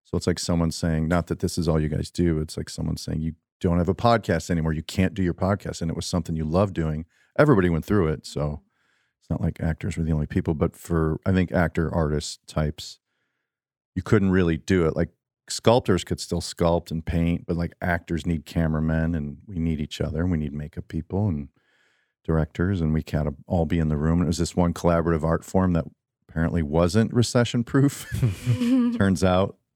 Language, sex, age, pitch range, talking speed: English, male, 40-59, 80-105 Hz, 215 wpm